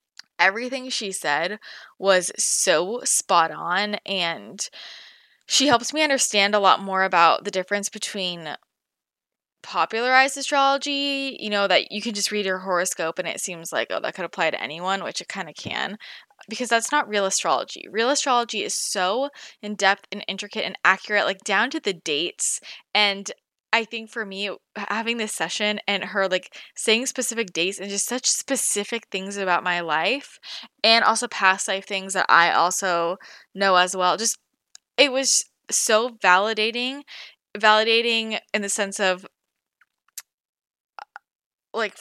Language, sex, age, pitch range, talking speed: English, female, 20-39, 195-240 Hz, 155 wpm